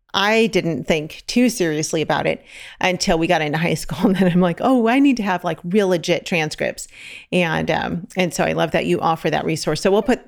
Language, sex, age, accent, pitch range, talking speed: English, female, 40-59, American, 170-210 Hz, 235 wpm